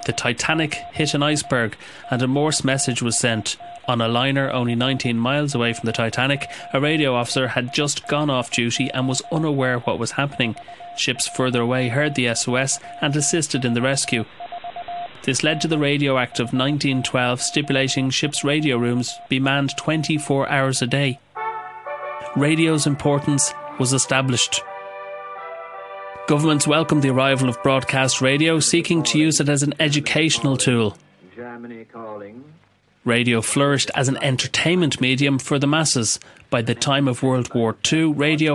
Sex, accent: male, Irish